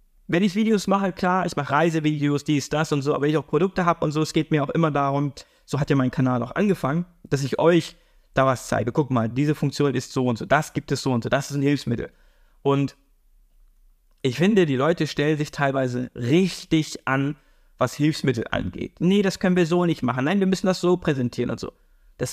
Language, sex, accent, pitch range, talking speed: German, male, German, 135-180 Hz, 230 wpm